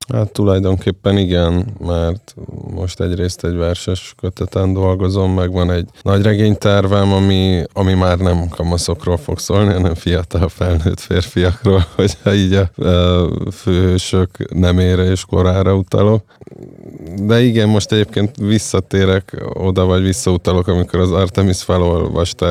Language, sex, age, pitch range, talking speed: Hungarian, male, 20-39, 90-95 Hz, 125 wpm